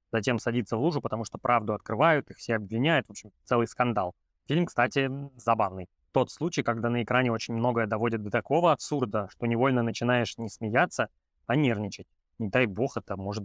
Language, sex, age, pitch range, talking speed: Russian, male, 20-39, 105-130 Hz, 185 wpm